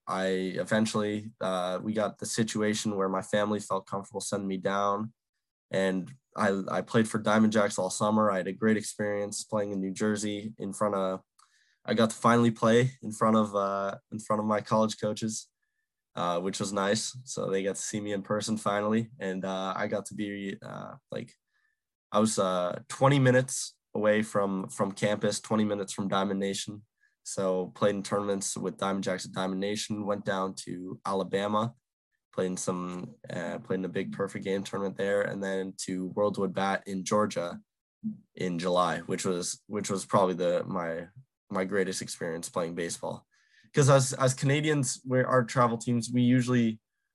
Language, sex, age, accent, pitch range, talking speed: English, male, 10-29, American, 95-115 Hz, 180 wpm